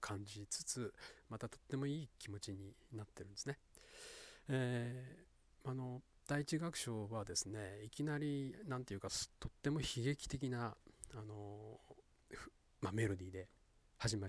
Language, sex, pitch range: Japanese, male, 100-140 Hz